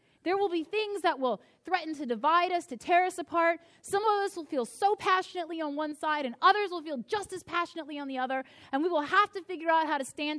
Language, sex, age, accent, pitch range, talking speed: English, female, 30-49, American, 235-330 Hz, 255 wpm